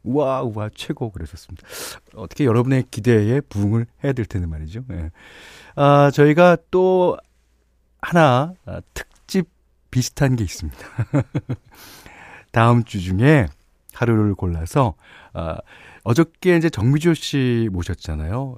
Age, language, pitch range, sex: 40-59, Korean, 95-145 Hz, male